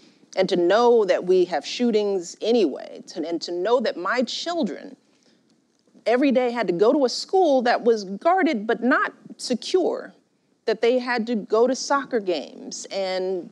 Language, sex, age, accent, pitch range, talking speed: English, female, 40-59, American, 180-250 Hz, 165 wpm